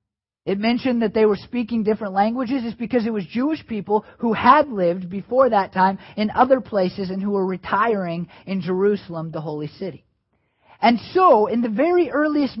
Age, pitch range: 40-59, 165-230 Hz